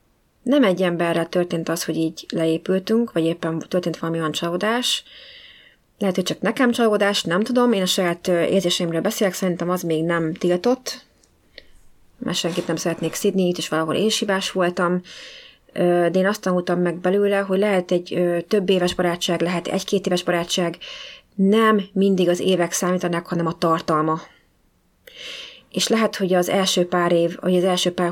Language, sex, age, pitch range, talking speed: Hungarian, female, 30-49, 170-200 Hz, 165 wpm